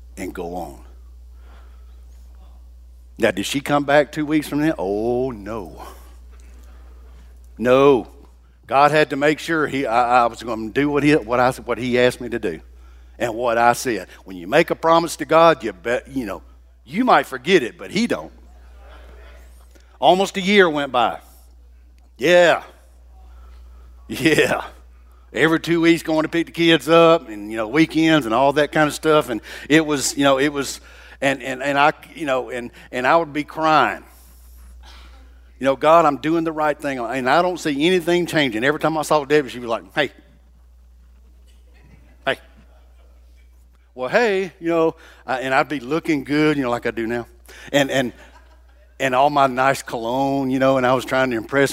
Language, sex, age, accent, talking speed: English, male, 60-79, American, 185 wpm